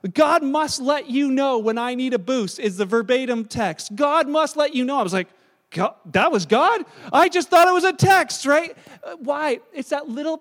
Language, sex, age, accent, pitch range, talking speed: English, male, 40-59, American, 220-275 Hz, 215 wpm